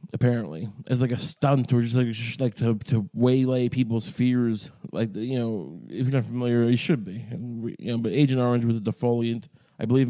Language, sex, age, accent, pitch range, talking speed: English, male, 20-39, American, 120-160 Hz, 220 wpm